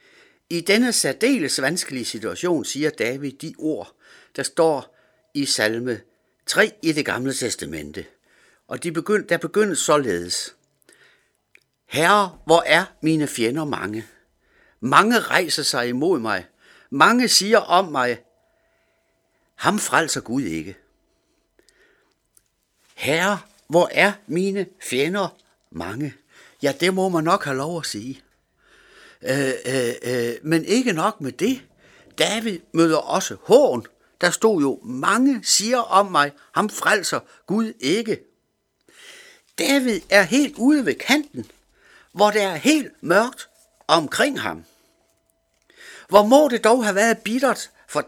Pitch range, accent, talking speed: 140-230 Hz, native, 125 wpm